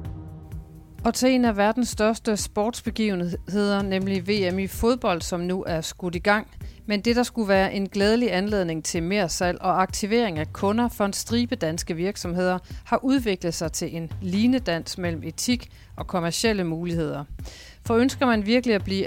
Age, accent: 40-59, native